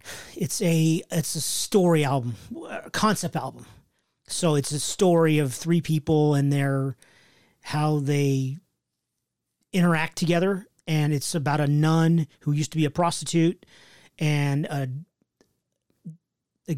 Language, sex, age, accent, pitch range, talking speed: English, male, 40-59, American, 140-165 Hz, 130 wpm